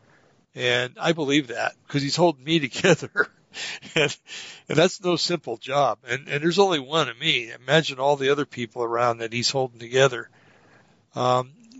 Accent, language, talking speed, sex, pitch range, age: American, English, 170 wpm, male, 120-155 Hz, 60-79